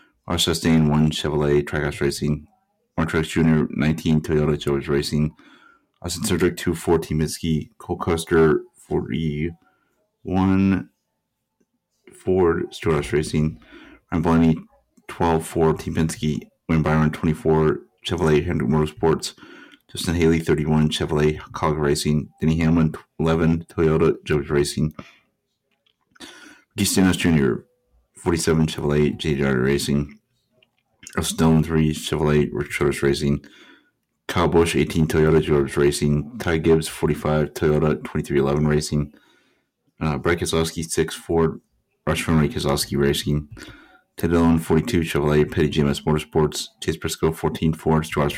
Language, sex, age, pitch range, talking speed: English, male, 30-49, 75-80 Hz, 115 wpm